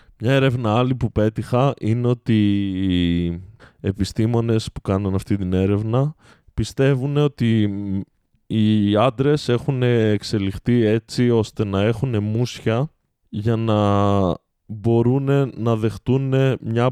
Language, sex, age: Greek, male, 20-39